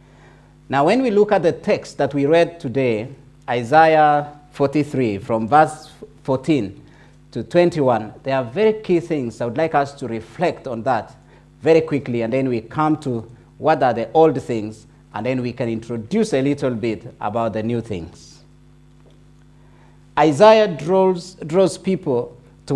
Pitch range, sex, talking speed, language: 130-165 Hz, male, 160 wpm, English